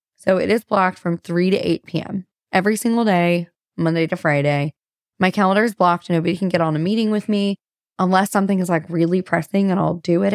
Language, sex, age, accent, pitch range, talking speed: English, female, 20-39, American, 180-220 Hz, 215 wpm